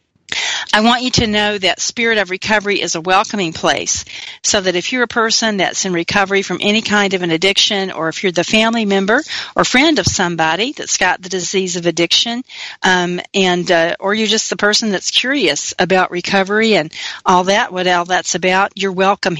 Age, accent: 40-59, American